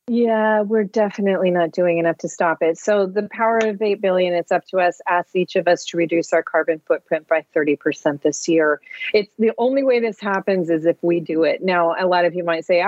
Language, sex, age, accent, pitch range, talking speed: English, female, 40-59, American, 175-220 Hz, 235 wpm